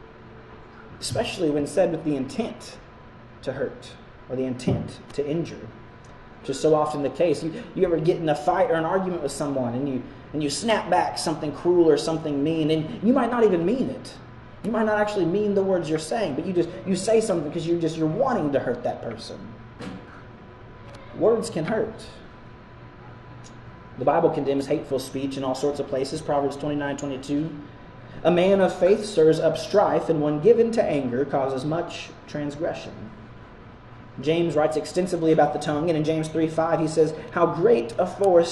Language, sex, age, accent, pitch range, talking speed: English, male, 30-49, American, 130-170 Hz, 190 wpm